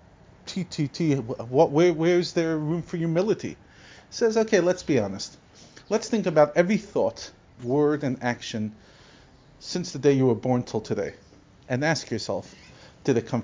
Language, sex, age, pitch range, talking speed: English, male, 40-59, 115-170 Hz, 155 wpm